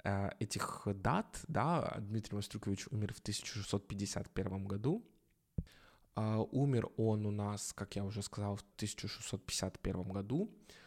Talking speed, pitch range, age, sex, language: 115 wpm, 100-135 Hz, 20-39, male, Russian